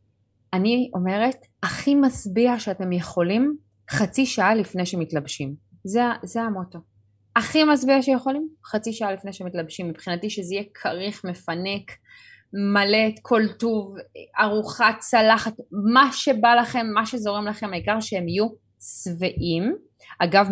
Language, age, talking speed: Hebrew, 20-39, 125 wpm